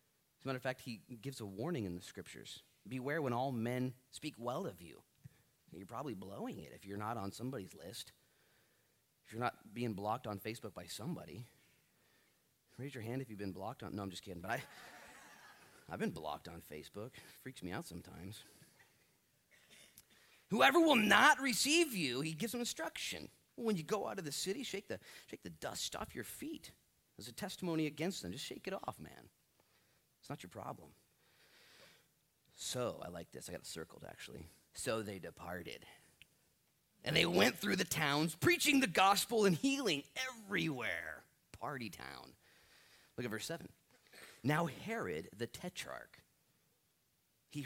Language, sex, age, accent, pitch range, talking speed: English, male, 30-49, American, 100-170 Hz, 170 wpm